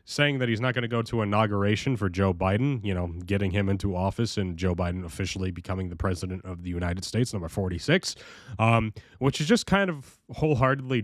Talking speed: 205 wpm